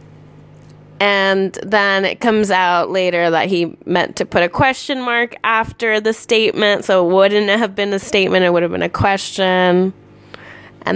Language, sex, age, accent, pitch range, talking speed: English, female, 20-39, American, 175-215 Hz, 170 wpm